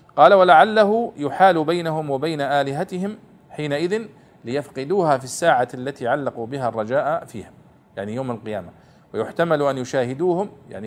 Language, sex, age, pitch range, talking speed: Arabic, male, 50-69, 125-165 Hz, 120 wpm